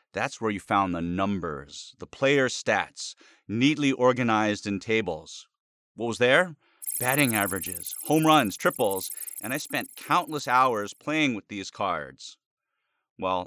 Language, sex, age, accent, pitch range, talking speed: English, male, 40-59, American, 110-140 Hz, 140 wpm